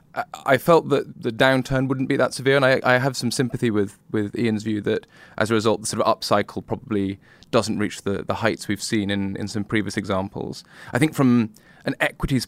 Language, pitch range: English, 100-120 Hz